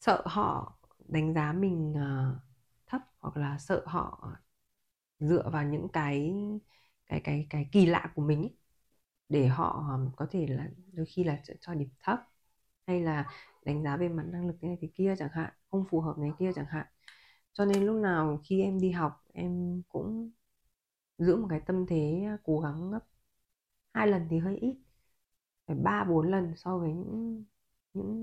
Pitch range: 155-195 Hz